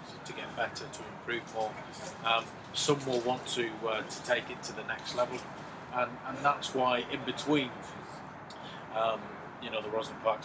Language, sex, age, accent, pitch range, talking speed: English, male, 30-49, British, 115-145 Hz, 180 wpm